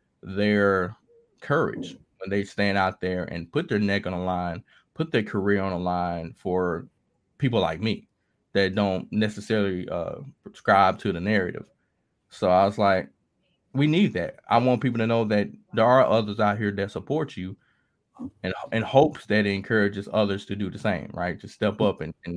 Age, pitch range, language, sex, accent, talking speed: 20-39, 95-110 Hz, English, male, American, 190 wpm